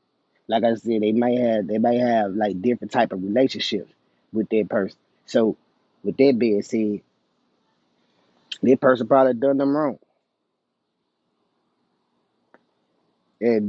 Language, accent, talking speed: English, American, 125 wpm